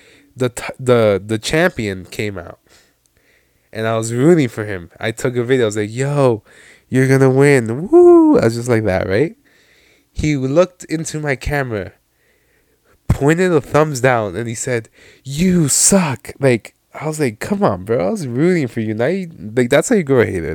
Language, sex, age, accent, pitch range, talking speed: English, male, 20-39, American, 100-135 Hz, 190 wpm